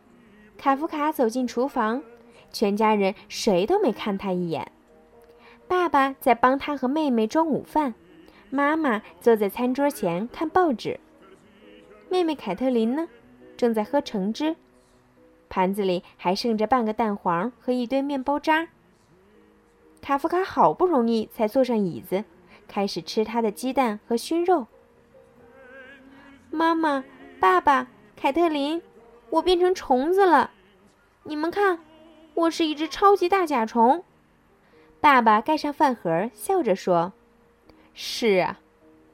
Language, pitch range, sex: Chinese, 210-310 Hz, female